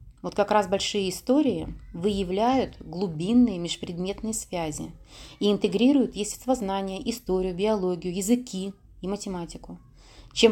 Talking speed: 105 wpm